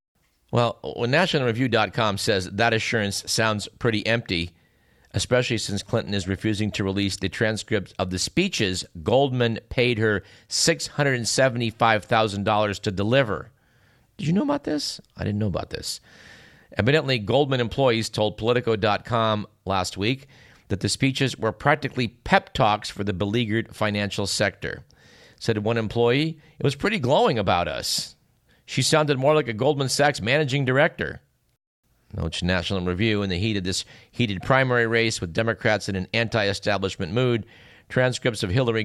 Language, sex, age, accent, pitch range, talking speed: English, male, 50-69, American, 100-125 Hz, 145 wpm